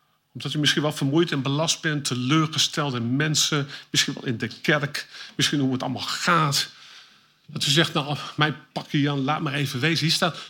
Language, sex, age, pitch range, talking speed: Dutch, male, 50-69, 140-185 Hz, 195 wpm